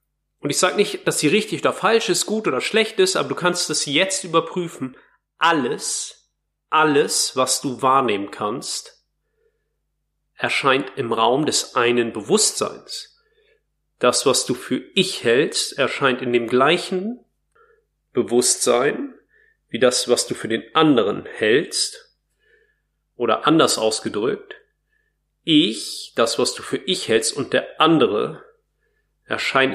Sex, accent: male, German